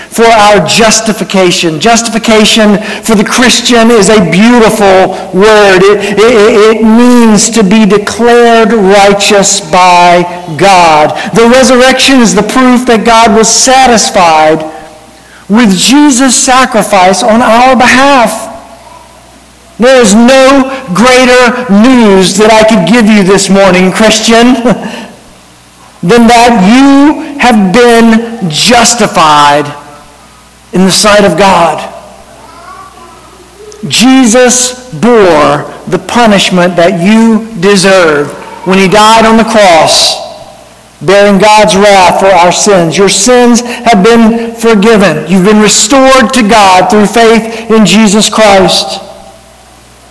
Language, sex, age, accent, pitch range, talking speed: English, male, 50-69, American, 195-235 Hz, 115 wpm